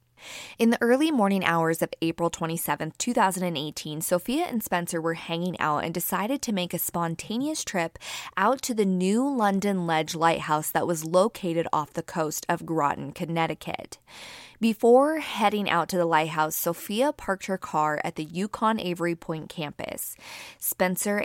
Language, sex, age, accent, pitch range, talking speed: English, female, 20-39, American, 165-210 Hz, 155 wpm